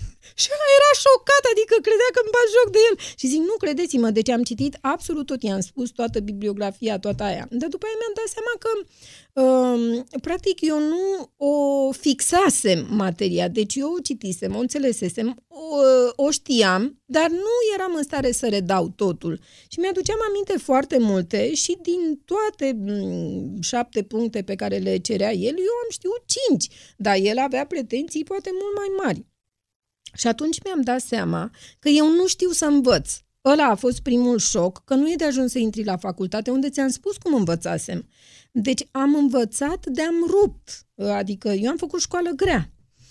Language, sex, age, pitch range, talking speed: Romanian, female, 30-49, 220-345 Hz, 180 wpm